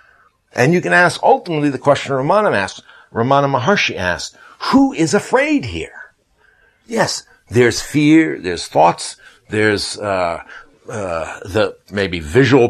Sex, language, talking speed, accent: male, English, 130 wpm, American